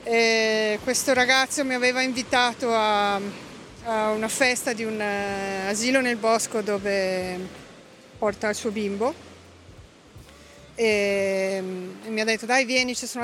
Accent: native